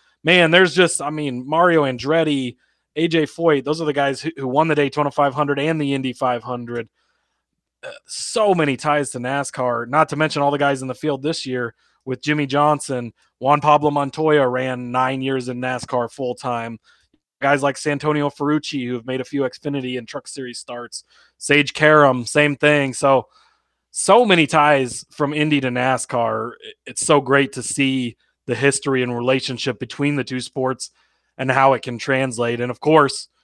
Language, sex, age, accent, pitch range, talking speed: English, male, 20-39, American, 130-150 Hz, 175 wpm